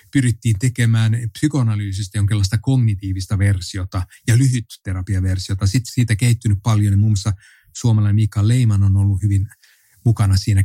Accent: native